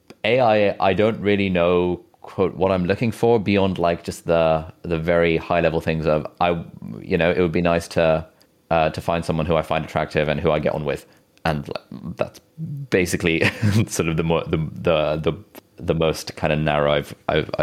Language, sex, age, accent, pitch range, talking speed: English, male, 20-39, British, 85-110 Hz, 200 wpm